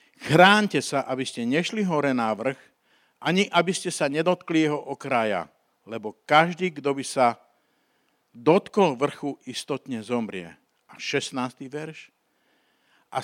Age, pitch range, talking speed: 50-69, 130-170 Hz, 125 wpm